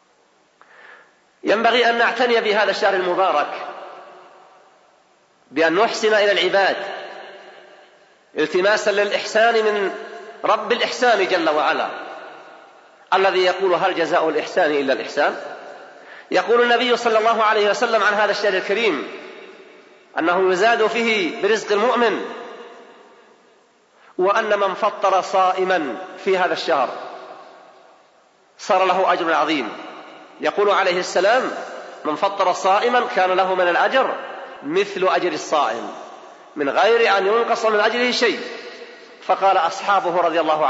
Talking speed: 110 wpm